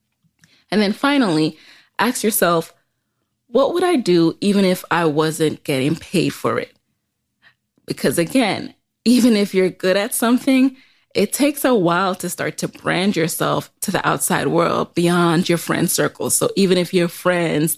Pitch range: 155-215 Hz